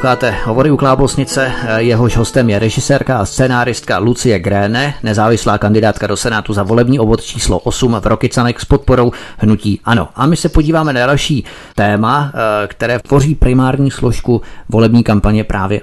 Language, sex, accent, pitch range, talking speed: Czech, male, native, 110-130 Hz, 150 wpm